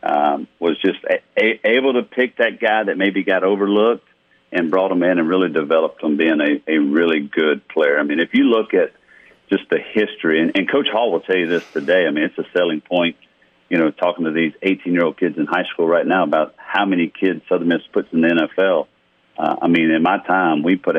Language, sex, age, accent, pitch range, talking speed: English, male, 50-69, American, 85-100 Hz, 235 wpm